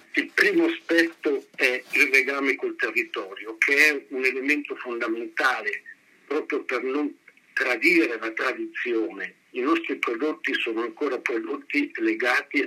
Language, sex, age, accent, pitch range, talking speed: Italian, male, 50-69, native, 330-390 Hz, 125 wpm